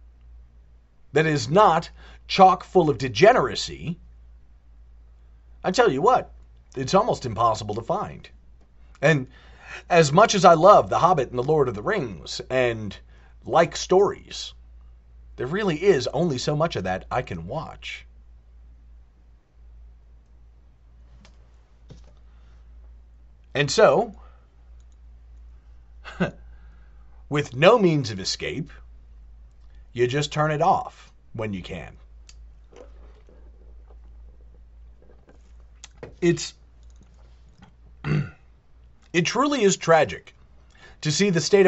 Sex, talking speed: male, 100 wpm